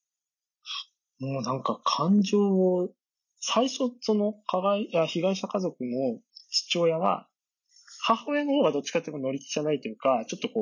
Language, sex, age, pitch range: Japanese, male, 20-39, 135-220 Hz